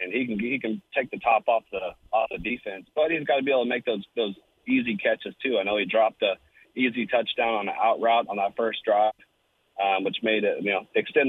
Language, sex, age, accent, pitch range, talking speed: English, male, 30-49, American, 100-115 Hz, 255 wpm